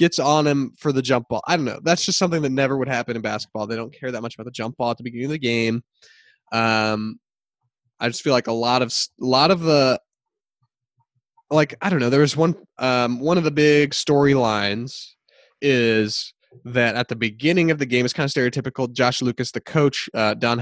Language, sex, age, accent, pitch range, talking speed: English, male, 20-39, American, 115-160 Hz, 225 wpm